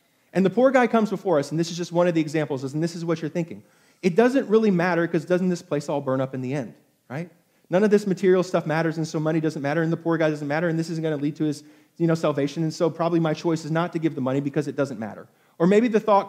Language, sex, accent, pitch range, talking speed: English, male, American, 150-195 Hz, 300 wpm